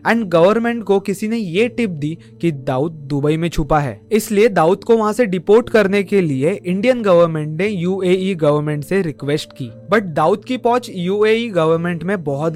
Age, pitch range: 20-39, 145-195 Hz